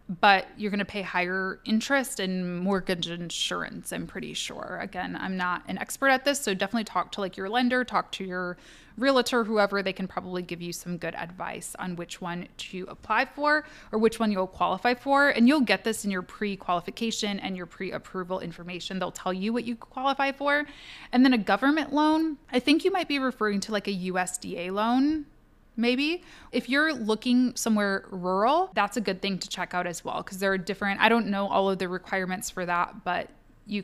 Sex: female